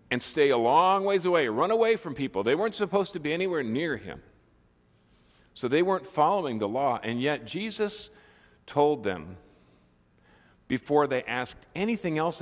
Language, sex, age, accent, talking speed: English, male, 50-69, American, 165 wpm